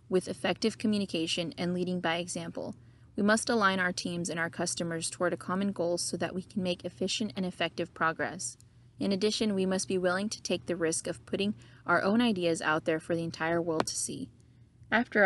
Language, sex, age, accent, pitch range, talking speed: English, female, 20-39, American, 165-200 Hz, 205 wpm